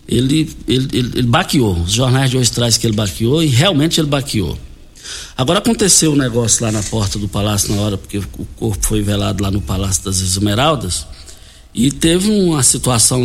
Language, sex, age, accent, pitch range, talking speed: Portuguese, male, 60-79, Brazilian, 110-150 Hz, 190 wpm